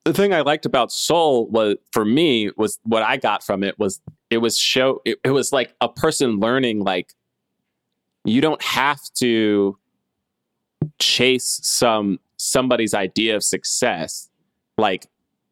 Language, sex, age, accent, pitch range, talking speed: English, male, 30-49, American, 105-130 Hz, 145 wpm